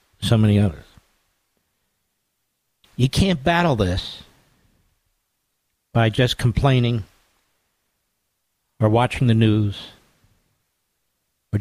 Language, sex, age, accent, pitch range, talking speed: English, male, 50-69, American, 105-135 Hz, 80 wpm